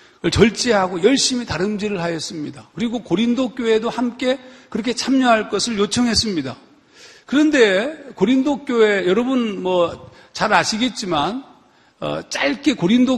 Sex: male